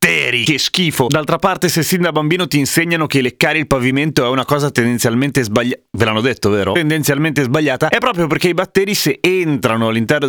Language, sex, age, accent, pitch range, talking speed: Italian, male, 30-49, native, 125-180 Hz, 190 wpm